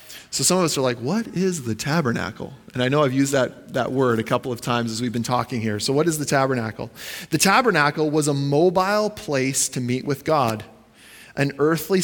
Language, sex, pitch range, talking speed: English, male, 120-165 Hz, 220 wpm